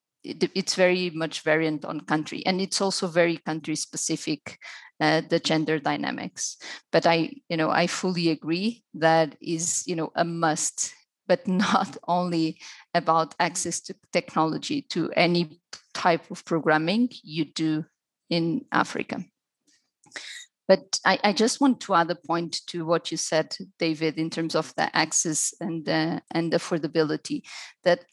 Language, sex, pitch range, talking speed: English, female, 165-200 Hz, 145 wpm